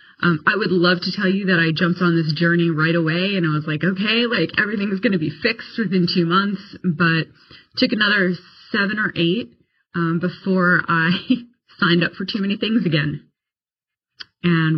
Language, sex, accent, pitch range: English, female, American, 160-190 Hz